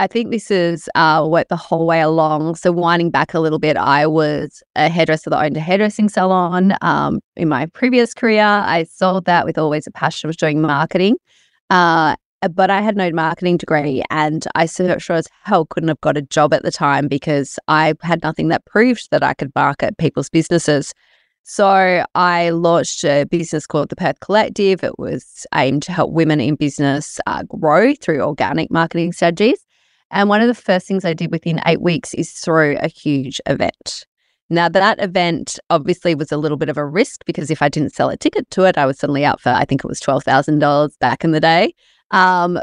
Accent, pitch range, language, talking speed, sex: Australian, 155-190 Hz, English, 210 wpm, female